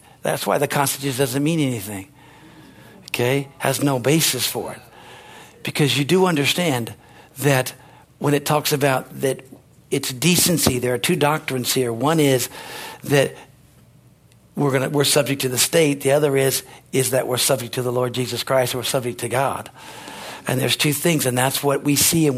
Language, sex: English, male